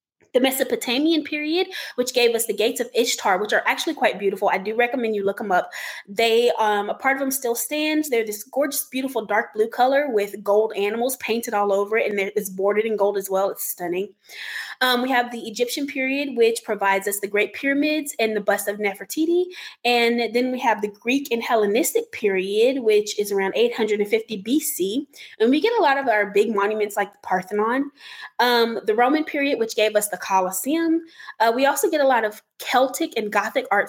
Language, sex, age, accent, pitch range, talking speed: English, female, 20-39, American, 205-260 Hz, 205 wpm